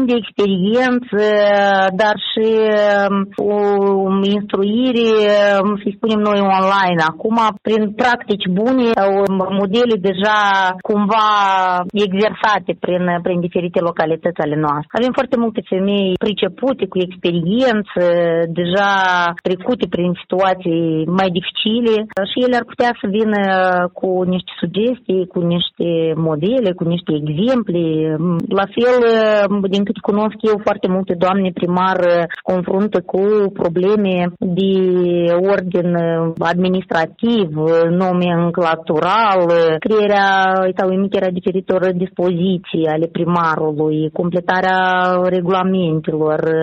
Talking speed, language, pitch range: 100 wpm, Romanian, 175-205 Hz